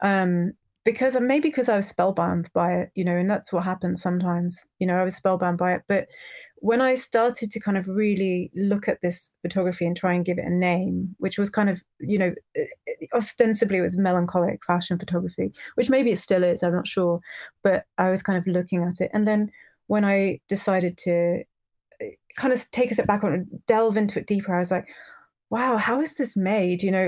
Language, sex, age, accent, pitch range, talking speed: English, female, 30-49, British, 175-205 Hz, 220 wpm